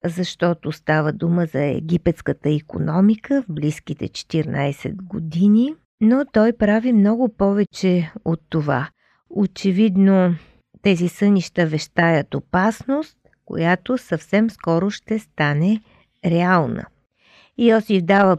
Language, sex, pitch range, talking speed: Bulgarian, female, 165-220 Hz, 100 wpm